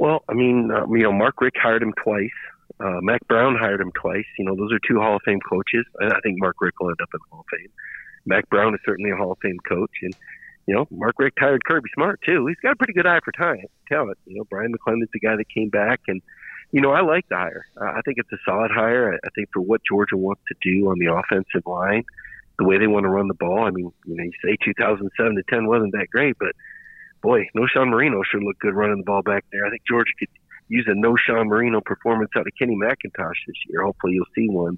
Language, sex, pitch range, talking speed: English, male, 100-125 Hz, 270 wpm